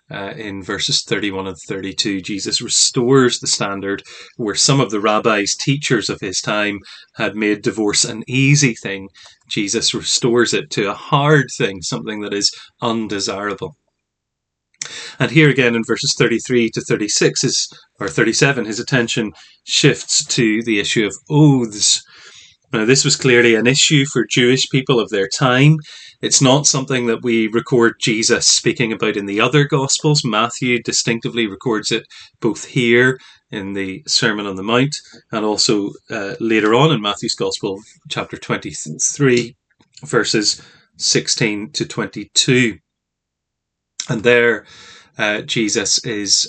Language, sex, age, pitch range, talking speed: English, male, 30-49, 105-135 Hz, 140 wpm